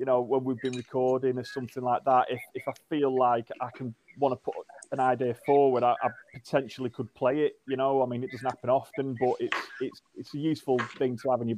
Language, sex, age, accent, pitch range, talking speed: English, male, 30-49, British, 120-140 Hz, 245 wpm